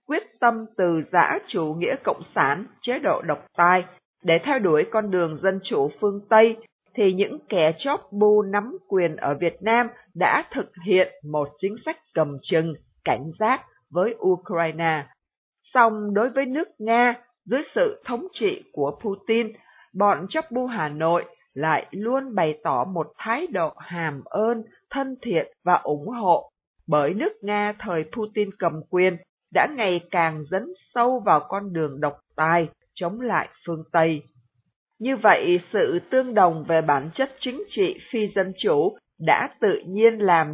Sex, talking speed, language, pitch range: female, 165 wpm, Vietnamese, 170-240 Hz